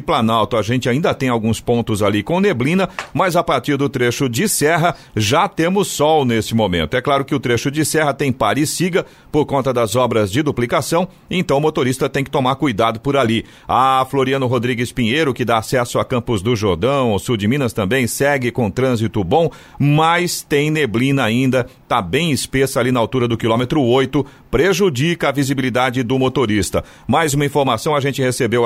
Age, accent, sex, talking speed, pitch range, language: 50-69, Brazilian, male, 195 wpm, 115-140 Hz, Portuguese